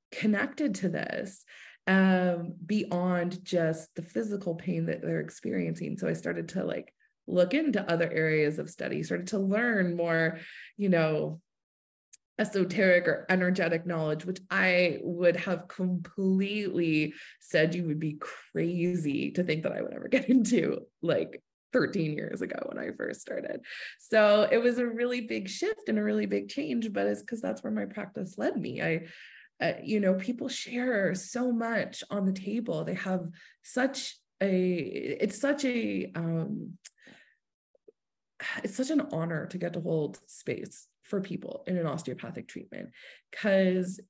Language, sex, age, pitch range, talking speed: English, female, 20-39, 165-215 Hz, 155 wpm